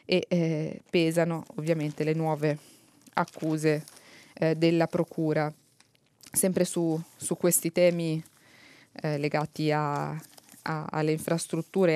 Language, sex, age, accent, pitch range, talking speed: Italian, female, 20-39, native, 160-185 Hz, 95 wpm